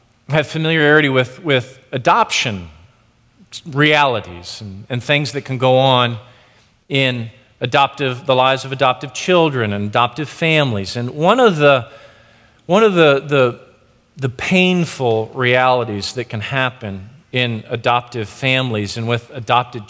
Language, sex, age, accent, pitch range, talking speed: English, male, 40-59, American, 125-180 Hz, 130 wpm